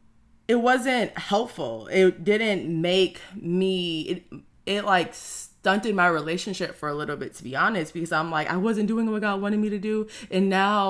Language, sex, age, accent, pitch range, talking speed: English, female, 20-39, American, 160-190 Hz, 180 wpm